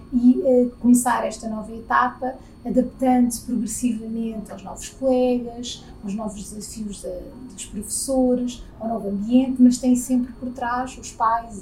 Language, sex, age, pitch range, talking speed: Portuguese, female, 20-39, 220-255 Hz, 145 wpm